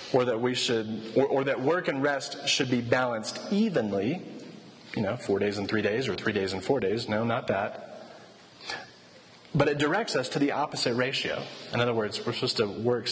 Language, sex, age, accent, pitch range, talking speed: English, male, 30-49, American, 105-160 Hz, 205 wpm